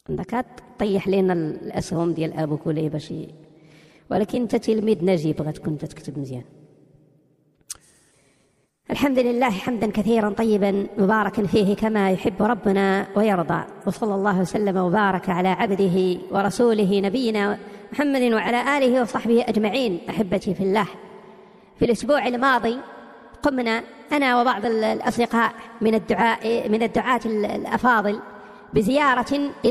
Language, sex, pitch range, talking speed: Arabic, male, 200-275 Hz, 110 wpm